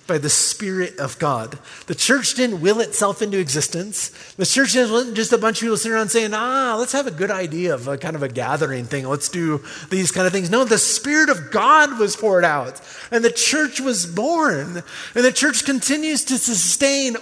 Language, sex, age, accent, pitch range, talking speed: English, male, 30-49, American, 190-250 Hz, 215 wpm